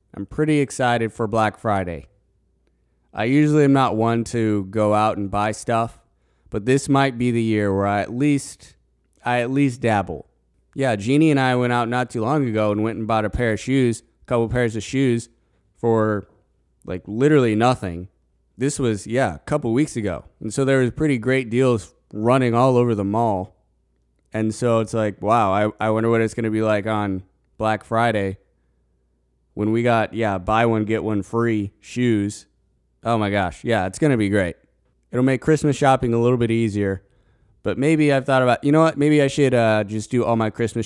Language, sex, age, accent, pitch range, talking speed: English, male, 20-39, American, 100-120 Hz, 205 wpm